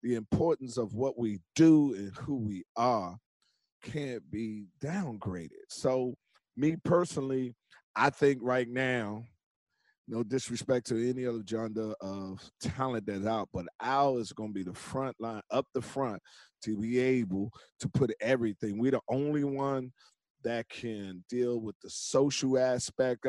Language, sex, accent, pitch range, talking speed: English, male, American, 115-135 Hz, 150 wpm